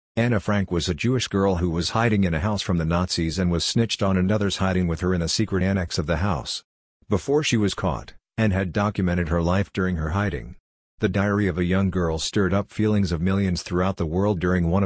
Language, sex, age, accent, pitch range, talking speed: English, male, 50-69, American, 90-105 Hz, 235 wpm